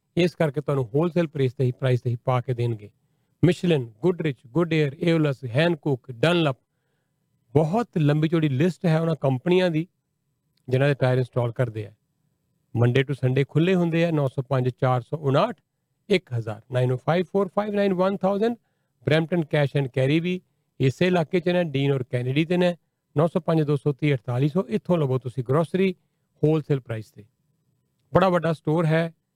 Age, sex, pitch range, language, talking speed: 40-59, male, 135-170 Hz, Punjabi, 155 wpm